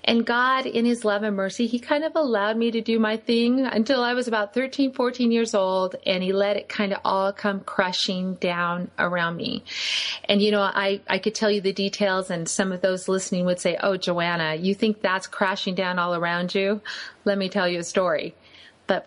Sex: female